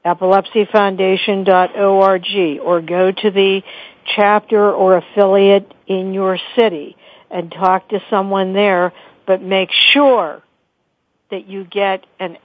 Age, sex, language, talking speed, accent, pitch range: 60-79, female, English, 110 wpm, American, 180-215 Hz